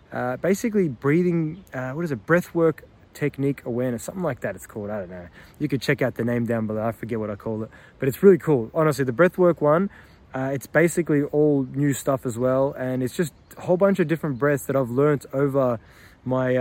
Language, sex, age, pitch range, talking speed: English, male, 20-39, 125-145 Hz, 225 wpm